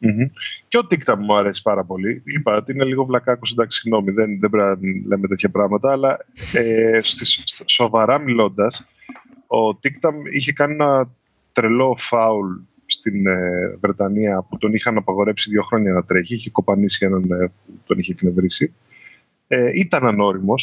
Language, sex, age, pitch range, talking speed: Greek, male, 20-39, 100-140 Hz, 160 wpm